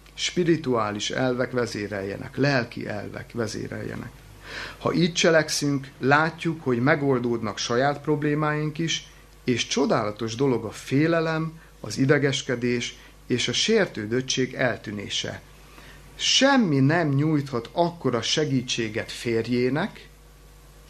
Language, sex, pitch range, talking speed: Hungarian, male, 115-150 Hz, 90 wpm